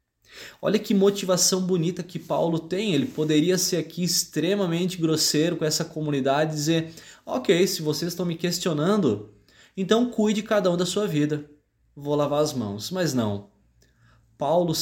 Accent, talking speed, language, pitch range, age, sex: Brazilian, 150 wpm, Portuguese, 150-185 Hz, 20-39, male